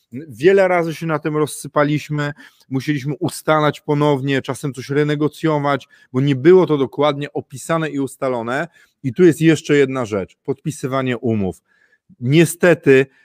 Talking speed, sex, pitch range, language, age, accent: 130 wpm, male, 130-175 Hz, Polish, 30-49, native